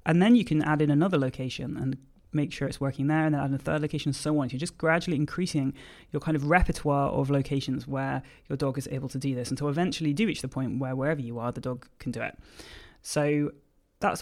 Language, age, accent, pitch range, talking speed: English, 20-39, British, 135-155 Hz, 255 wpm